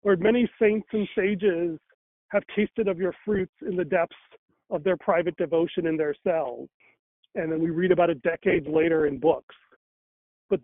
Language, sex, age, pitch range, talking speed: English, male, 40-59, 170-205 Hz, 175 wpm